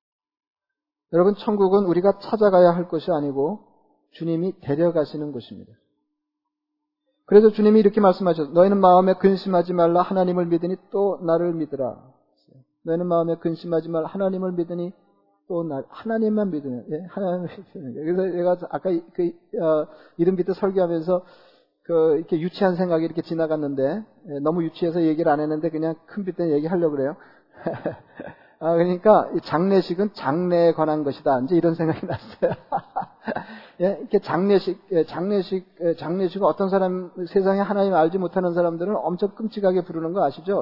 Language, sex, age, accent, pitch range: Korean, male, 40-59, native, 160-195 Hz